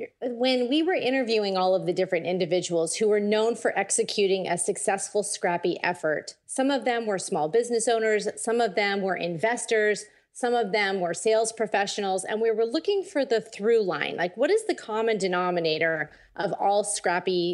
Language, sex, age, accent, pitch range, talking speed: English, female, 30-49, American, 200-250 Hz, 180 wpm